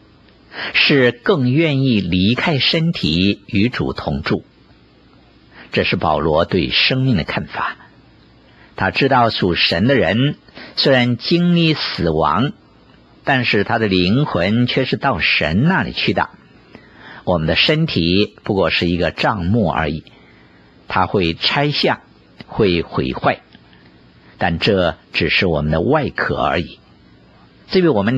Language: Chinese